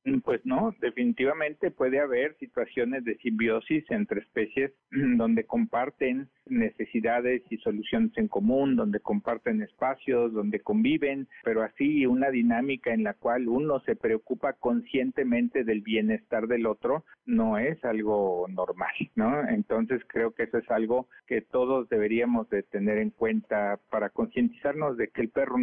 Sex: male